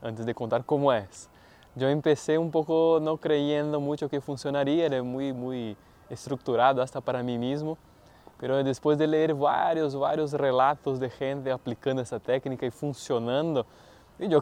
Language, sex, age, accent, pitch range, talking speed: Spanish, male, 20-39, Brazilian, 125-155 Hz, 155 wpm